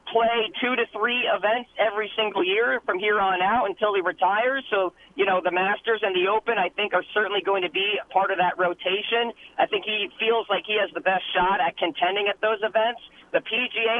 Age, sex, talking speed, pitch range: 40-59, male, 225 wpm, 185-225 Hz